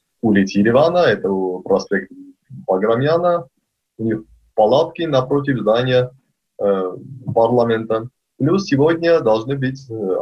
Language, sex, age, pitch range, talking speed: Russian, male, 20-39, 100-130 Hz, 100 wpm